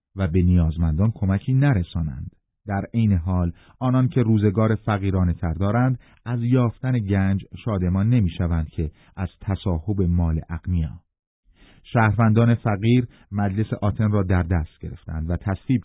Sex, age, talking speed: male, 30-49, 130 wpm